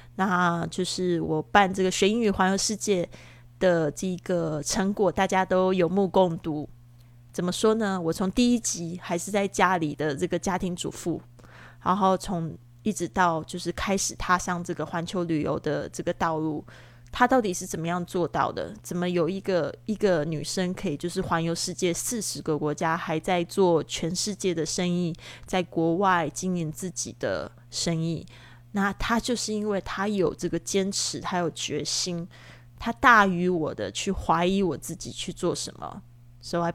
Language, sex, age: Chinese, female, 20-39